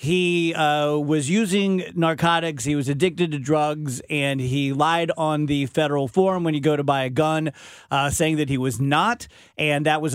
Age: 40-59